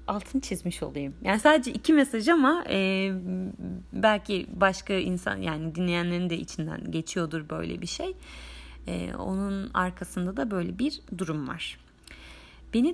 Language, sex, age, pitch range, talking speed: Turkish, female, 30-49, 160-215 Hz, 135 wpm